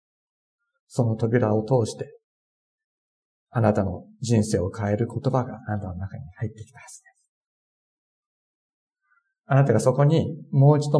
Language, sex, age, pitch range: Japanese, male, 50-69, 110-150 Hz